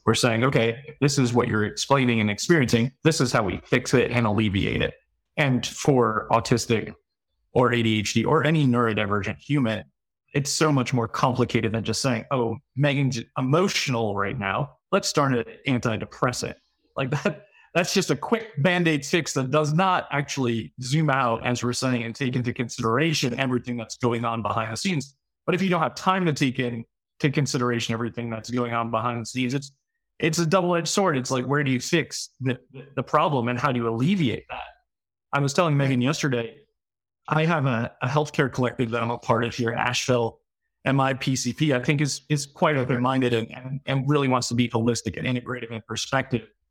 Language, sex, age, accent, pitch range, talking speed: English, male, 30-49, American, 115-150 Hz, 195 wpm